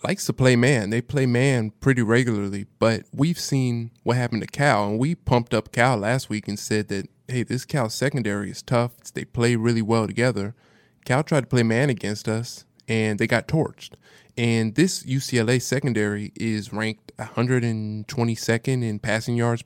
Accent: American